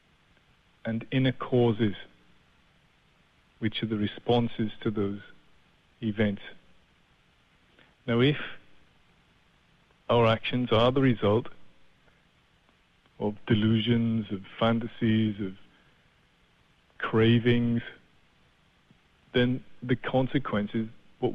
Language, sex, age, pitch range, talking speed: English, male, 40-59, 100-125 Hz, 75 wpm